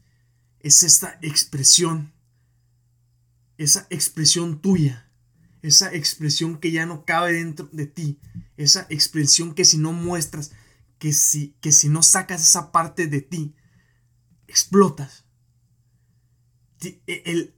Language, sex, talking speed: Spanish, male, 110 wpm